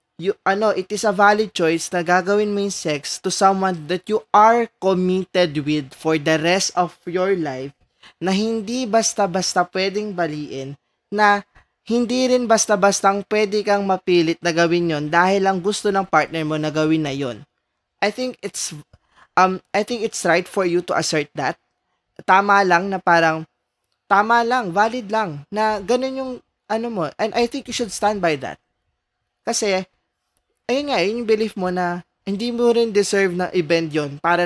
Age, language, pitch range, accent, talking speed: 20-39, Filipino, 165-210 Hz, native, 170 wpm